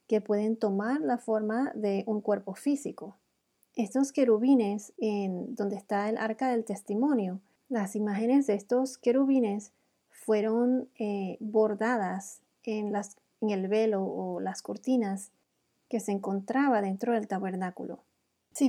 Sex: female